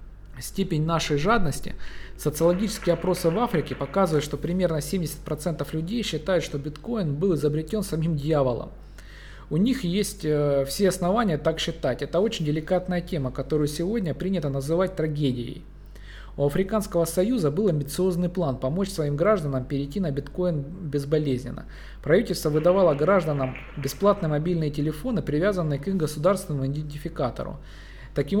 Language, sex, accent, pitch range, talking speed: Russian, male, native, 145-185 Hz, 125 wpm